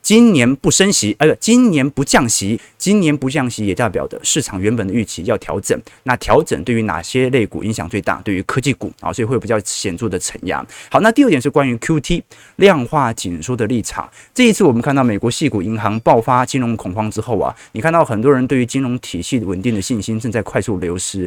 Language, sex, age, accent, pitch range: Chinese, male, 30-49, native, 110-150 Hz